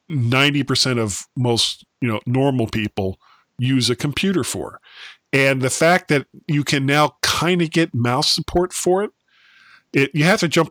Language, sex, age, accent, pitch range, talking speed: English, male, 40-59, American, 120-165 Hz, 175 wpm